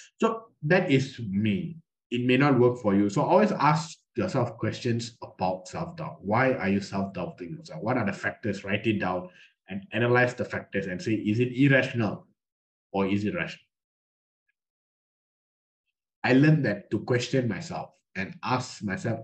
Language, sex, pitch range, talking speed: English, male, 95-135 Hz, 155 wpm